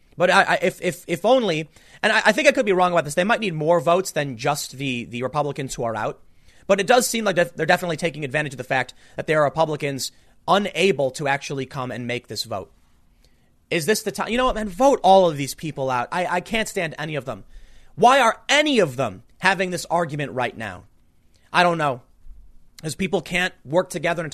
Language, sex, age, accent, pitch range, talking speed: English, male, 30-49, American, 140-185 Hz, 230 wpm